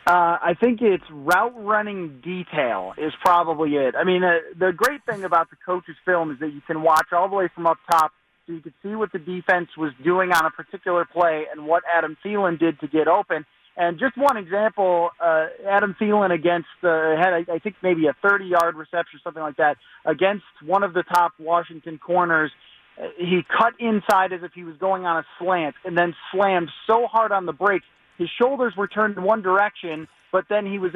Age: 30-49